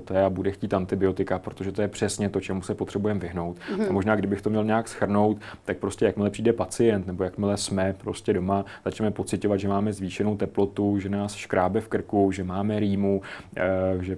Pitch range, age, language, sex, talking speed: 95-105 Hz, 30-49, Czech, male, 185 wpm